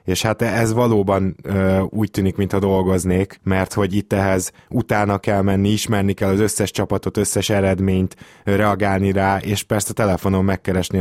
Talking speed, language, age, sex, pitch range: 165 wpm, Hungarian, 20-39, male, 95-105 Hz